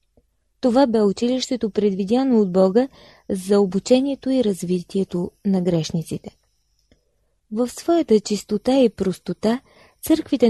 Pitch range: 200-245 Hz